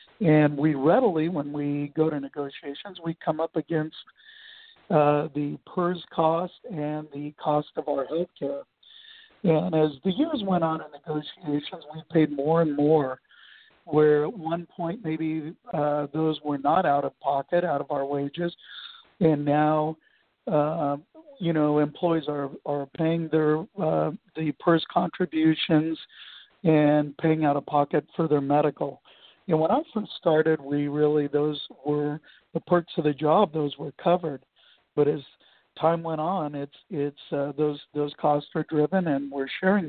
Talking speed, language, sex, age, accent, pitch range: 165 wpm, English, male, 60-79, American, 145-170 Hz